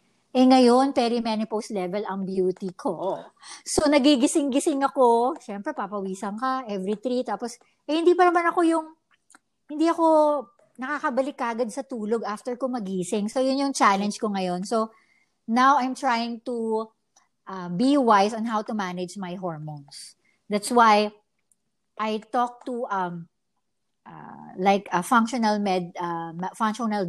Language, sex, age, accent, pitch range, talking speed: English, male, 50-69, Filipino, 195-275 Hz, 140 wpm